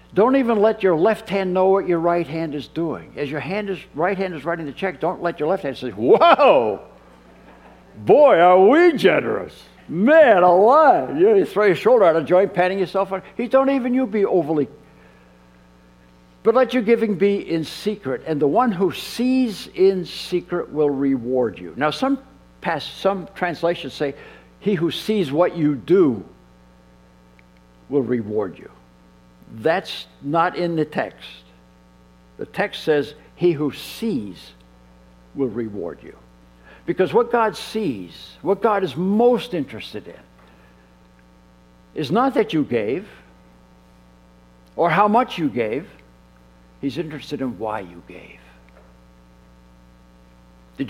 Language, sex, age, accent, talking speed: English, male, 60-79, American, 150 wpm